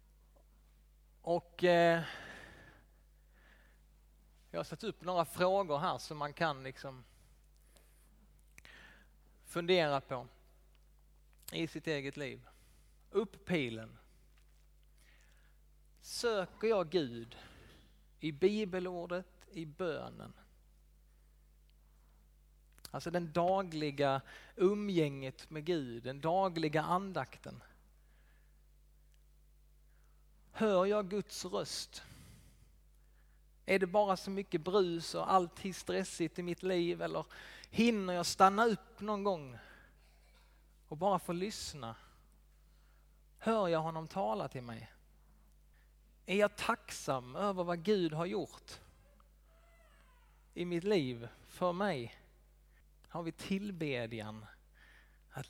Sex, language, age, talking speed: male, Swedish, 30-49, 95 wpm